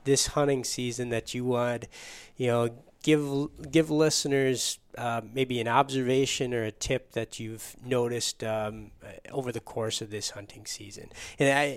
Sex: male